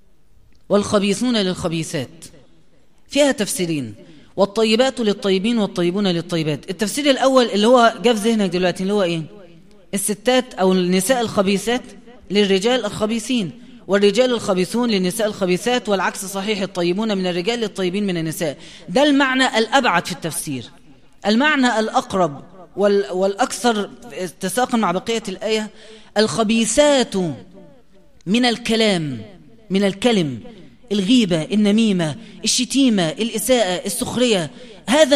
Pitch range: 190-245 Hz